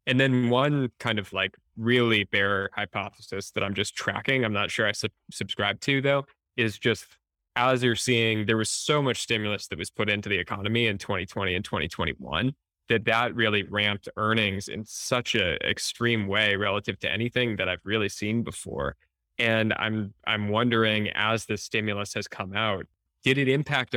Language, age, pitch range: English, 10-29, 100-120 Hz